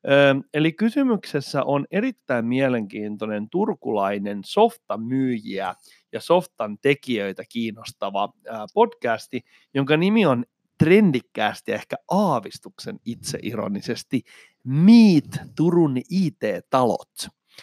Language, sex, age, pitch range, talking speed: Finnish, male, 30-49, 115-165 Hz, 75 wpm